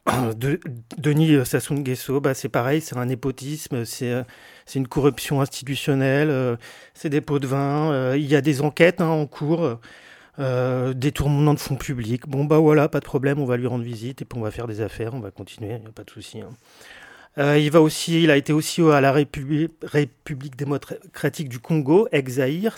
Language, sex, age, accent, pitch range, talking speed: French, male, 40-59, French, 125-155 Hz, 205 wpm